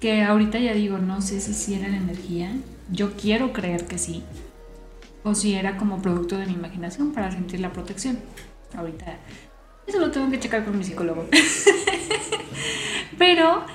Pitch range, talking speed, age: 185-225 Hz, 165 wpm, 30-49